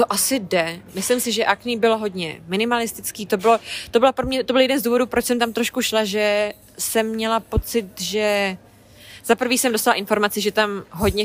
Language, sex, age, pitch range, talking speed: Czech, female, 20-39, 185-225 Hz, 205 wpm